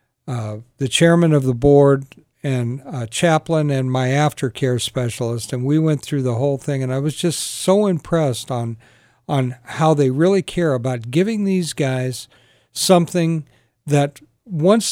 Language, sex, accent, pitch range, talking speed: English, male, American, 125-160 Hz, 155 wpm